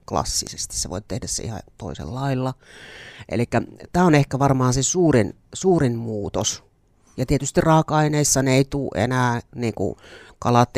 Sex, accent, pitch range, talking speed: male, native, 110-135 Hz, 150 wpm